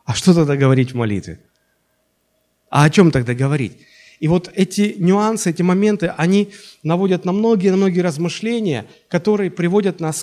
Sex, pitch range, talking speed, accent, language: male, 135-190 Hz, 155 wpm, native, Russian